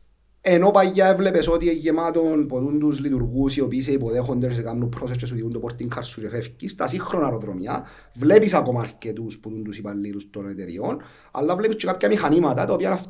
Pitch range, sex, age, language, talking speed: 120-165 Hz, male, 40-59, Greek, 165 wpm